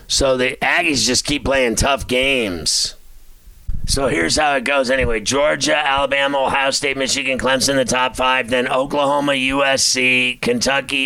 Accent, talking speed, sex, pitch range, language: American, 145 wpm, male, 120-140 Hz, English